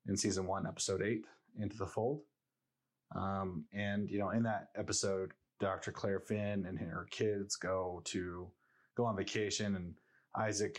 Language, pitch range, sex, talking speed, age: English, 95-110 Hz, male, 155 wpm, 30-49